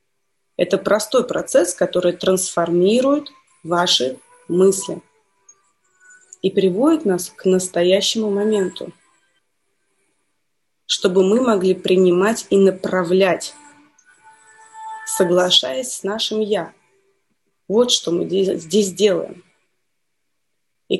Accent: native